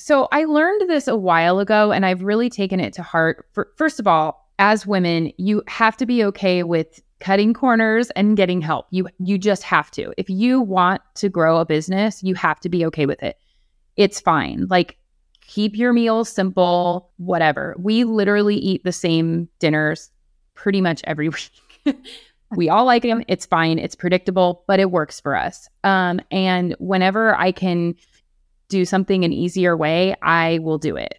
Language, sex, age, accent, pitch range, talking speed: English, female, 30-49, American, 170-215 Hz, 185 wpm